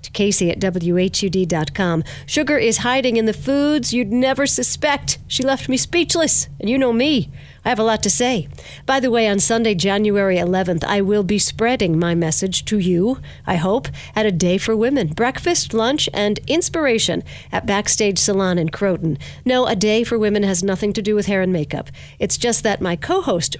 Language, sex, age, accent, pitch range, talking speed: English, female, 50-69, American, 180-240 Hz, 190 wpm